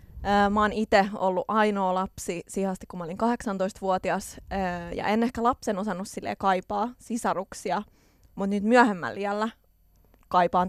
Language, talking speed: Finnish, 130 wpm